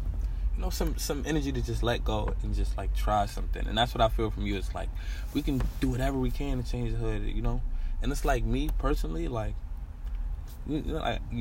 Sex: male